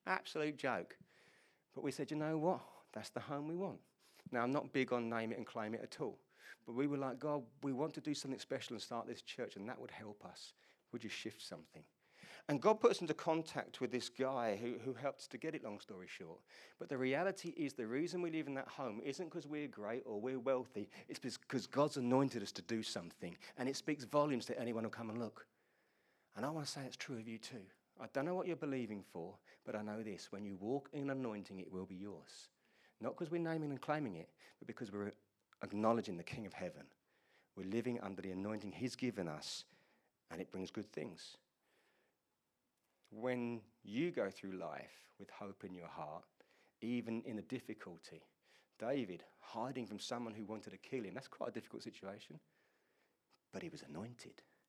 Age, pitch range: 40-59, 110-145 Hz